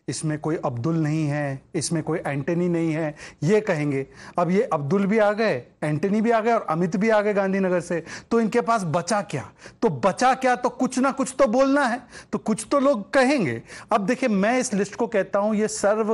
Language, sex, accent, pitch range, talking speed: English, male, Indian, 170-220 Hz, 125 wpm